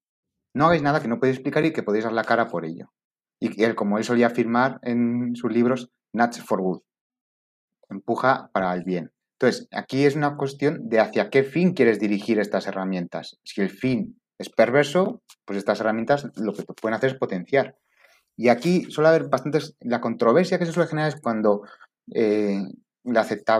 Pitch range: 105-135 Hz